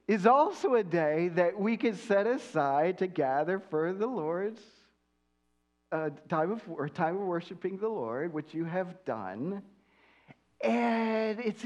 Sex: male